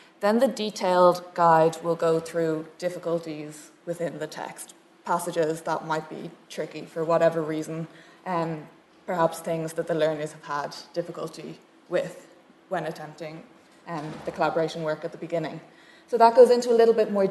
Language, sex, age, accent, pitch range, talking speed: English, female, 20-39, Irish, 160-185 Hz, 160 wpm